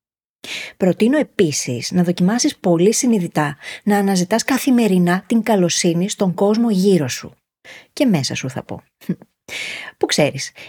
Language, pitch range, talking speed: Greek, 165-235 Hz, 125 wpm